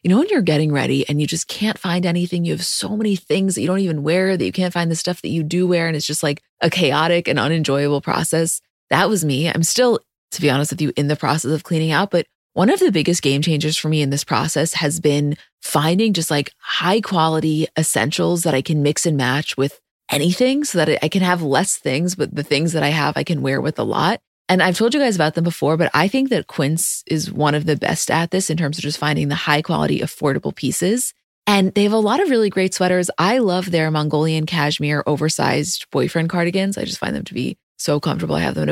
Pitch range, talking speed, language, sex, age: 150-180 Hz, 255 wpm, English, female, 20-39